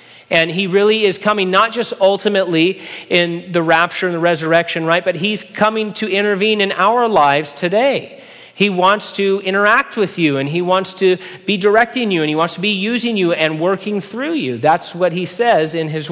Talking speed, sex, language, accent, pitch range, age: 200 wpm, male, English, American, 150-200 Hz, 40-59